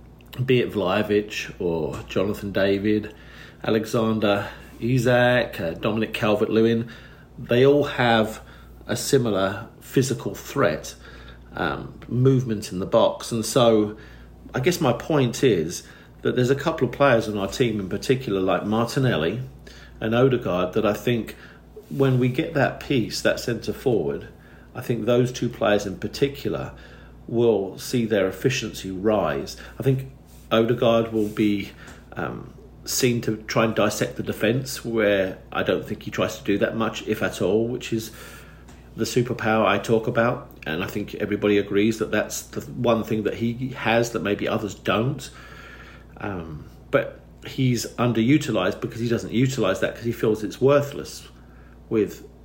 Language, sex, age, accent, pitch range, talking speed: English, male, 50-69, British, 105-125 Hz, 150 wpm